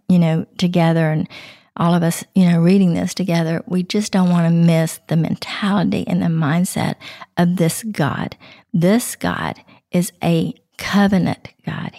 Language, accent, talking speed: English, American, 160 wpm